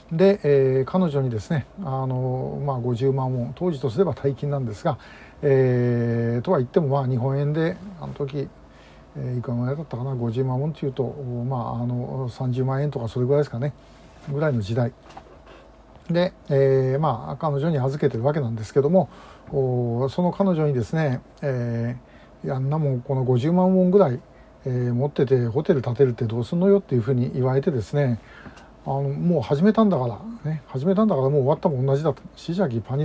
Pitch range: 125-150 Hz